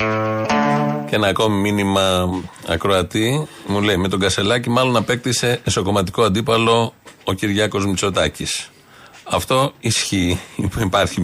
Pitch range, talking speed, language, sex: 95-130 Hz, 105 wpm, Greek, male